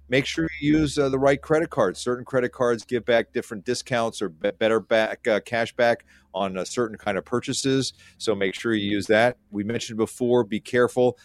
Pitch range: 100-120 Hz